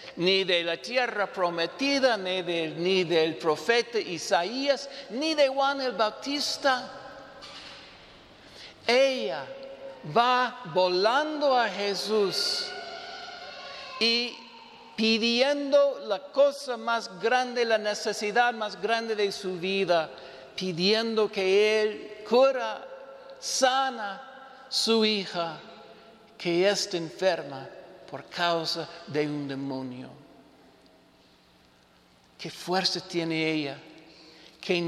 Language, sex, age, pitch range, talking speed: English, male, 50-69, 175-245 Hz, 90 wpm